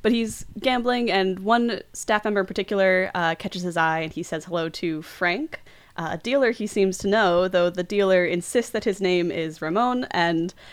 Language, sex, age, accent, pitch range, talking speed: English, female, 20-39, American, 175-220 Hz, 195 wpm